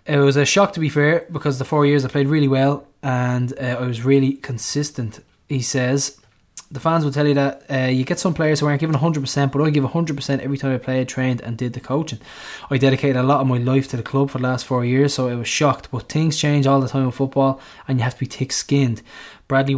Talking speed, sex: 260 wpm, male